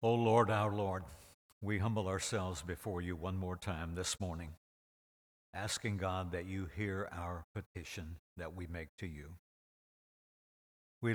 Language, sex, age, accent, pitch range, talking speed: English, male, 60-79, American, 85-105 Hz, 145 wpm